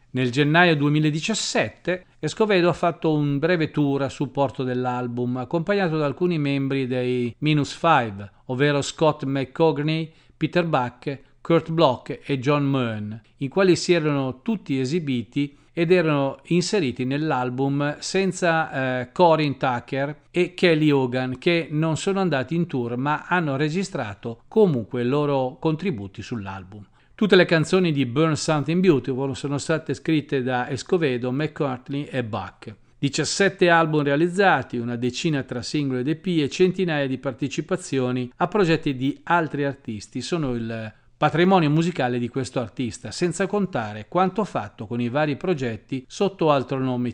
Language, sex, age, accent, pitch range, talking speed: Italian, male, 40-59, native, 125-170 Hz, 145 wpm